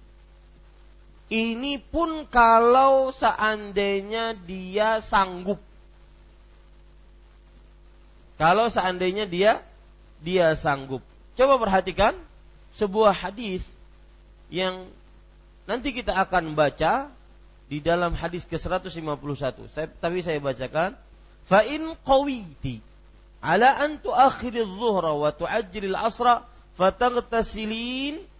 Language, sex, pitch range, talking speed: Malay, male, 160-240 Hz, 85 wpm